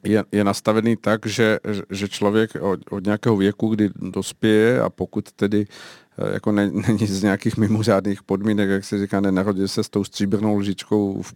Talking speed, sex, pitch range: 165 wpm, male, 100-110 Hz